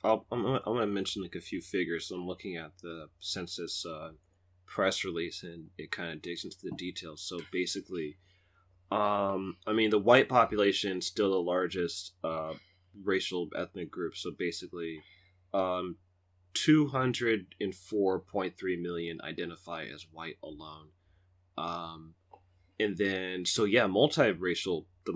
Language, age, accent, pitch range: English, 30-49, American, 90-105 Hz